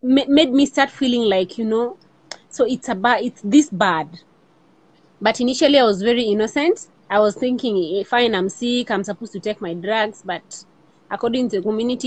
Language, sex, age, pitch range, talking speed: English, female, 30-49, 185-230 Hz, 190 wpm